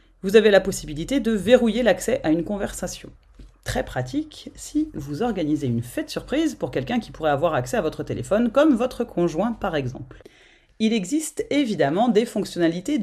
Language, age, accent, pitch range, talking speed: French, 30-49, French, 160-255 Hz, 170 wpm